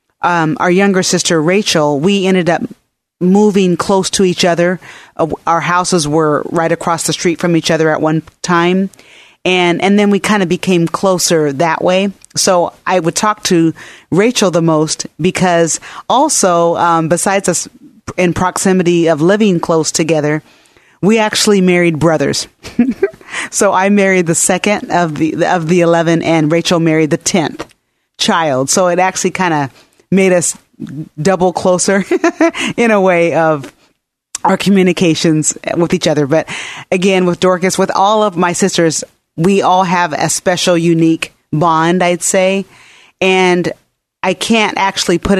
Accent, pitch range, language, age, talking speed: American, 165-190 Hz, English, 40-59, 155 wpm